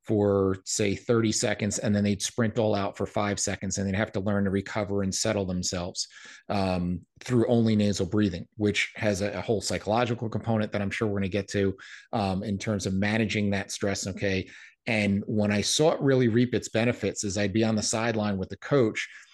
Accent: American